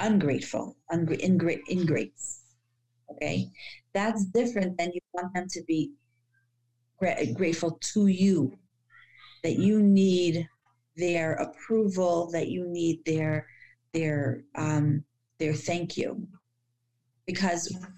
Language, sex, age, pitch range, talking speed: English, female, 40-59, 130-185 Hz, 105 wpm